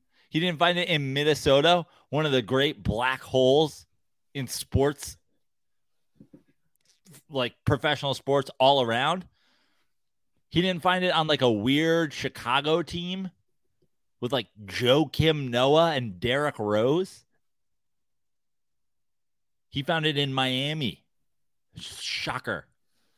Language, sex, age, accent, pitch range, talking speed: English, male, 30-49, American, 115-150 Hz, 110 wpm